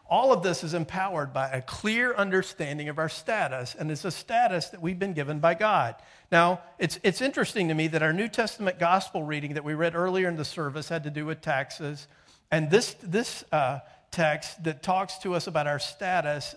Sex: male